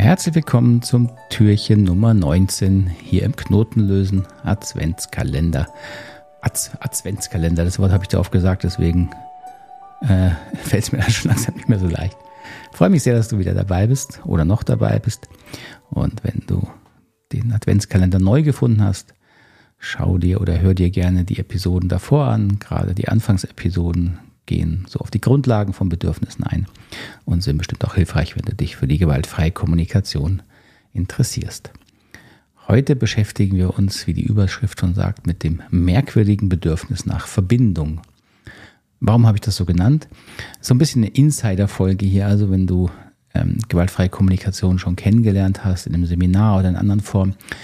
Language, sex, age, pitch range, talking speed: German, male, 50-69, 90-115 Hz, 160 wpm